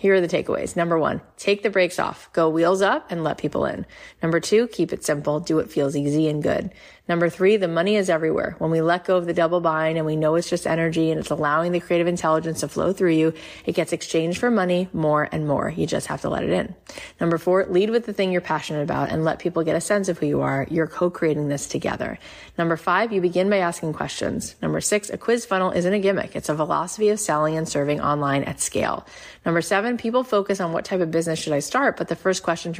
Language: English